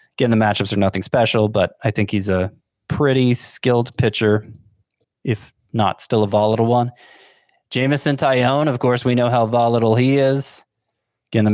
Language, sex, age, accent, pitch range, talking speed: English, male, 20-39, American, 105-125 Hz, 165 wpm